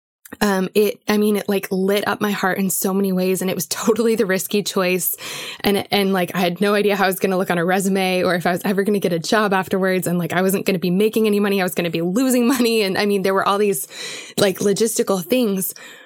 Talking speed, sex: 280 wpm, female